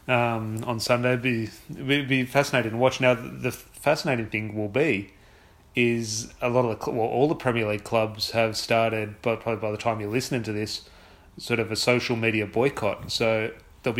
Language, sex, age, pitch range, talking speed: English, male, 30-49, 105-120 Hz, 195 wpm